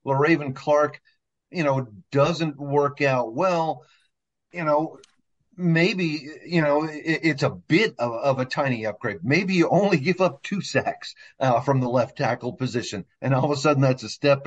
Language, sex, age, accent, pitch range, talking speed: English, male, 40-59, American, 120-145 Hz, 180 wpm